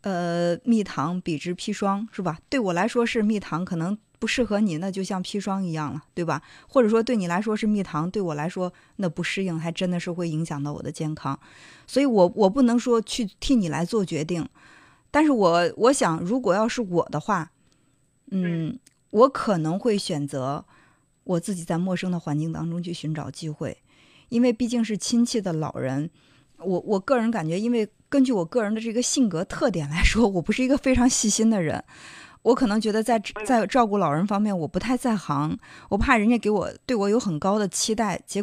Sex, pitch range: female, 165-220 Hz